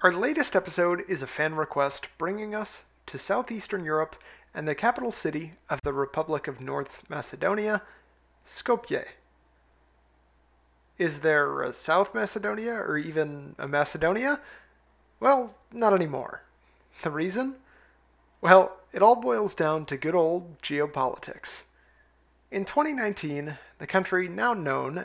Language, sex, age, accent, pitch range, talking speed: English, male, 30-49, American, 140-190 Hz, 125 wpm